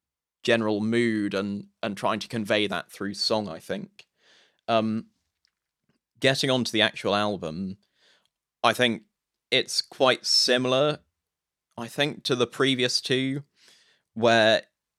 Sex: male